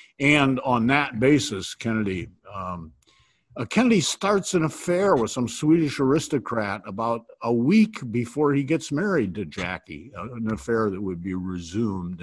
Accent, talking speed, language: American, 150 wpm, English